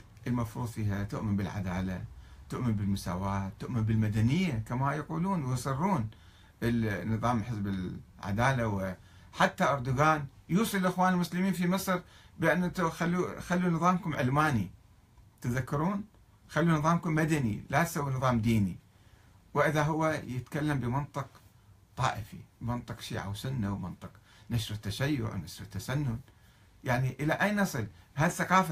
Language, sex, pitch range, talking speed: Arabic, male, 105-155 Hz, 105 wpm